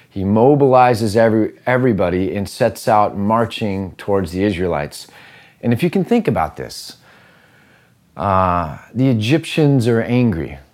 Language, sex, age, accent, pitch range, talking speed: English, male, 30-49, American, 100-135 Hz, 130 wpm